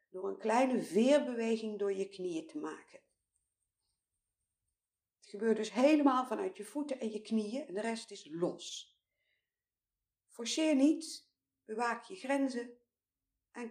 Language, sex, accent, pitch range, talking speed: Dutch, female, Dutch, 175-260 Hz, 130 wpm